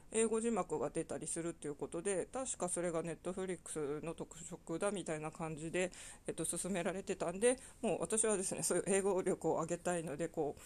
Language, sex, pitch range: Japanese, female, 165-210 Hz